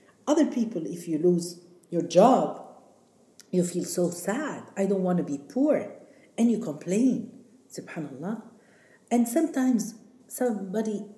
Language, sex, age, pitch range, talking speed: Arabic, female, 50-69, 175-250 Hz, 130 wpm